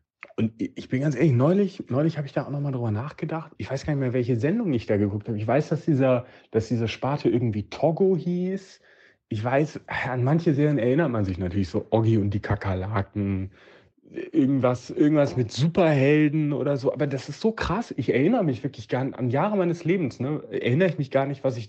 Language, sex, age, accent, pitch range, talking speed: German, male, 30-49, German, 110-150 Hz, 215 wpm